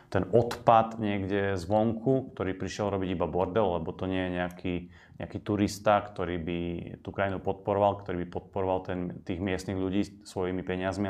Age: 30-49